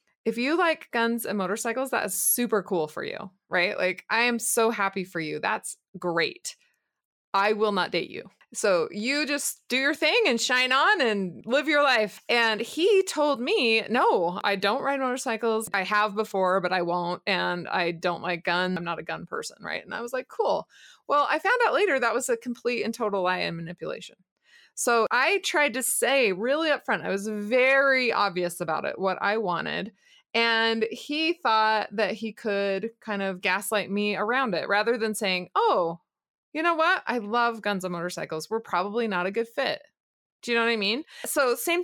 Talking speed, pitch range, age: 200 wpm, 190-250 Hz, 20-39